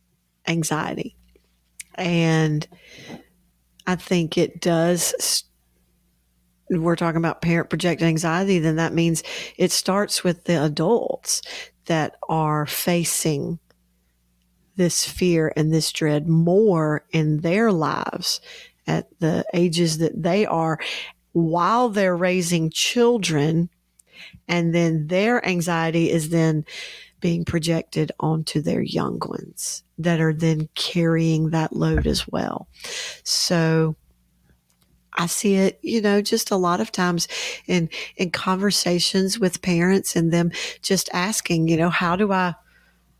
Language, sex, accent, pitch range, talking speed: English, female, American, 160-180 Hz, 120 wpm